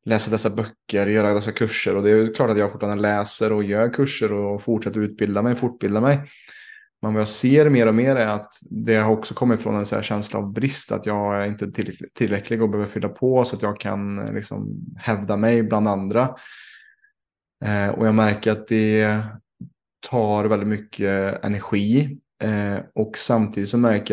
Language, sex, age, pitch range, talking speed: Swedish, male, 20-39, 100-115 Hz, 190 wpm